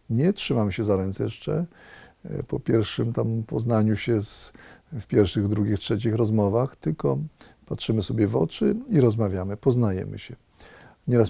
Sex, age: male, 40-59